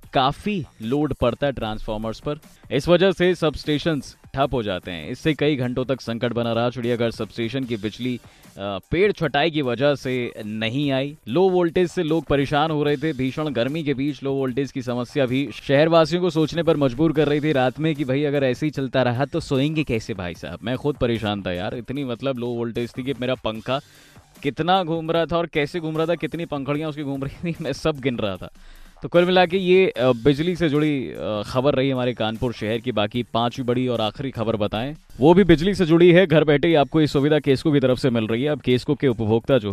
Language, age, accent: Hindi, 20-39, native